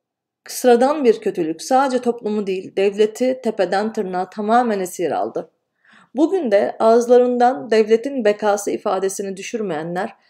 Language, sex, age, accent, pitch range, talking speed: Turkish, female, 40-59, native, 190-240 Hz, 110 wpm